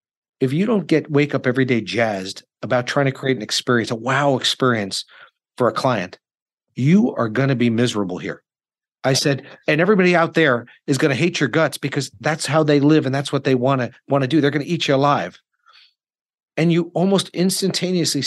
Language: English